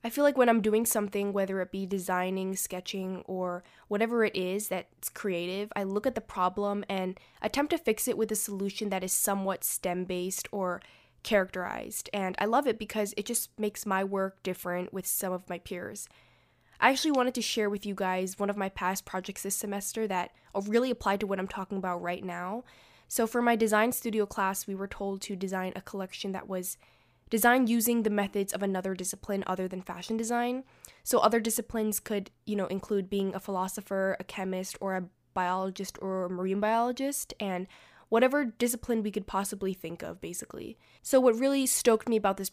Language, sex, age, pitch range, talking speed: English, female, 10-29, 185-220 Hz, 195 wpm